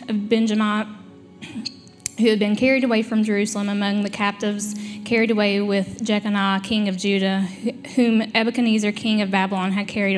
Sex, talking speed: female, 155 wpm